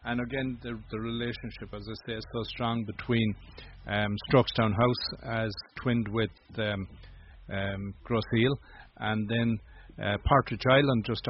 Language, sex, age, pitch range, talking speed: English, male, 40-59, 100-115 Hz, 150 wpm